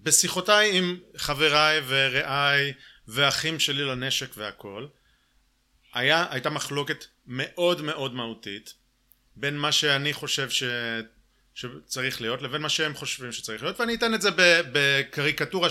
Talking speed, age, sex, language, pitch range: 120 wpm, 30-49, male, Hebrew, 130-175 Hz